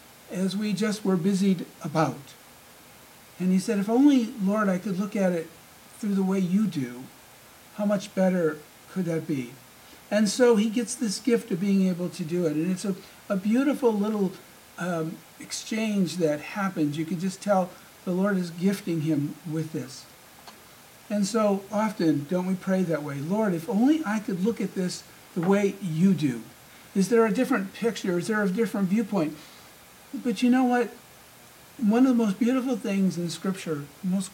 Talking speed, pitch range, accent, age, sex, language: 185 wpm, 175-225 Hz, American, 60-79, male, English